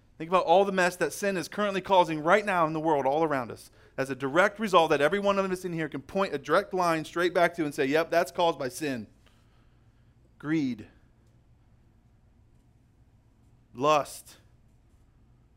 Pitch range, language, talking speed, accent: 115-155 Hz, English, 175 wpm, American